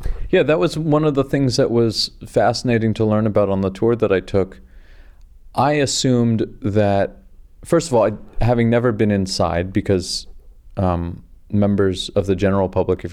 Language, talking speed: English, 175 wpm